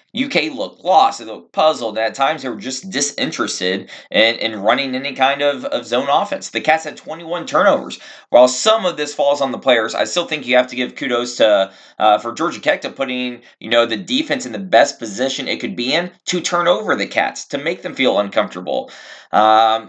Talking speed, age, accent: 220 wpm, 20-39, American